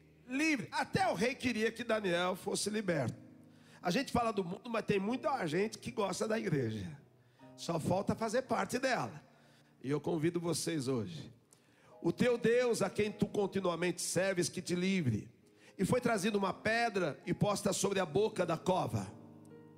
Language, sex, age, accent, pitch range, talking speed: Portuguese, male, 50-69, Brazilian, 170-235 Hz, 165 wpm